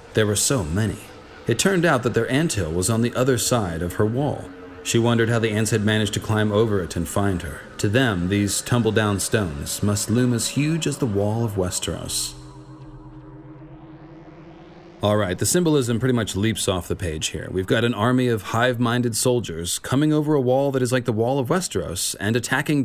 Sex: male